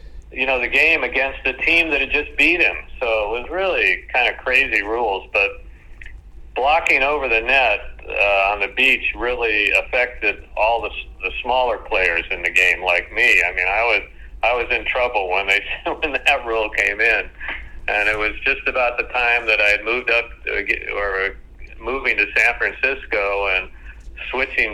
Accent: American